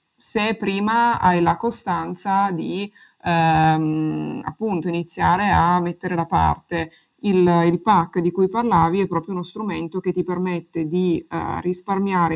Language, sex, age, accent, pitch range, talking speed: Italian, female, 20-39, native, 165-180 Hz, 140 wpm